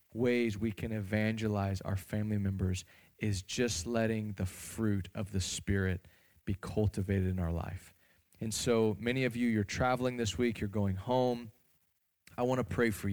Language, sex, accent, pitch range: English, male, American, 95-120 Hz